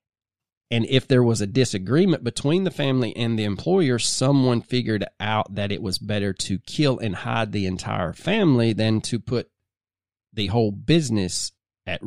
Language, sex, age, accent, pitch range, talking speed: English, male, 30-49, American, 105-140 Hz, 165 wpm